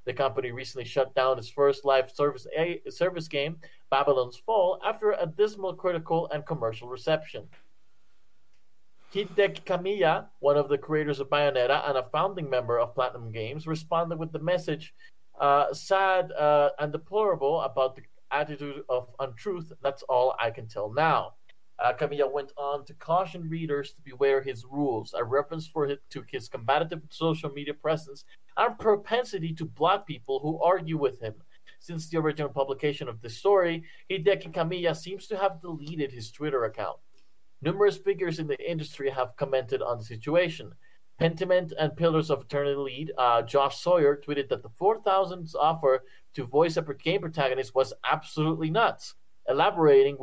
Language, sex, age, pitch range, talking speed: English, male, 40-59, 135-175 Hz, 160 wpm